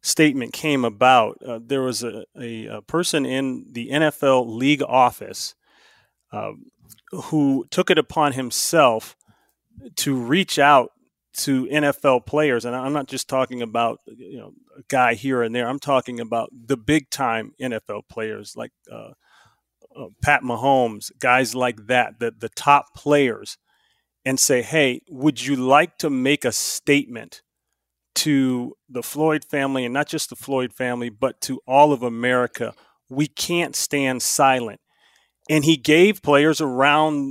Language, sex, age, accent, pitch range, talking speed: English, male, 30-49, American, 125-155 Hz, 150 wpm